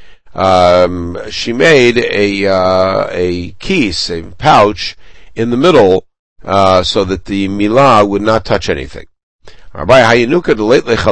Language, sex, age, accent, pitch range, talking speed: English, male, 60-79, American, 90-110 Hz, 130 wpm